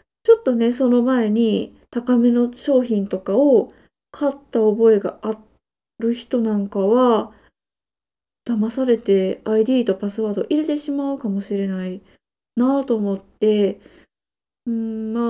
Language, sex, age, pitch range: Japanese, female, 20-39, 210-270 Hz